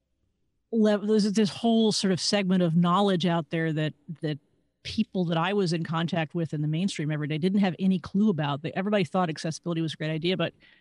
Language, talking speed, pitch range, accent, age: English, 205 wpm, 155-190 Hz, American, 40-59